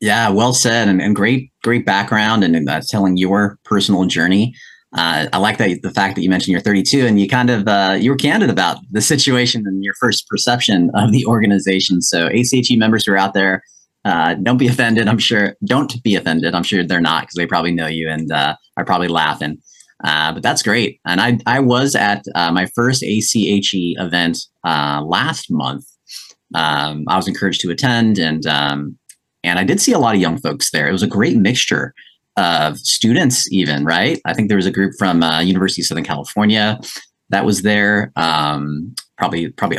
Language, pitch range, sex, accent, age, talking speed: English, 90-115 Hz, male, American, 30-49, 205 wpm